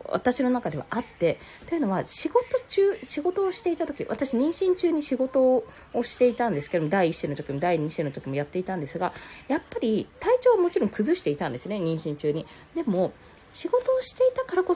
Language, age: Japanese, 20-39